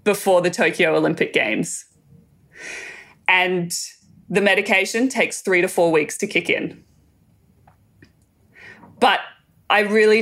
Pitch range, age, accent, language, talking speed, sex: 180-210 Hz, 20-39, Australian, English, 110 wpm, female